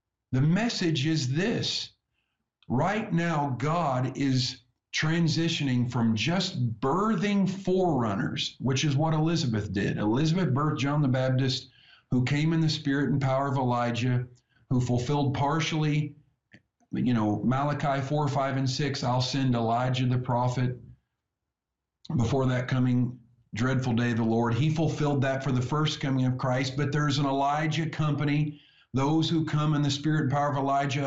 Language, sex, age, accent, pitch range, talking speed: English, male, 50-69, American, 120-155 Hz, 155 wpm